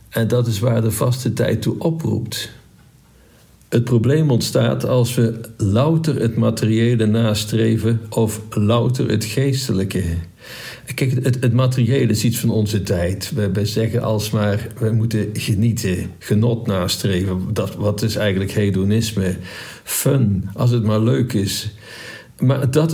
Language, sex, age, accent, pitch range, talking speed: Dutch, male, 50-69, Dutch, 105-125 Hz, 135 wpm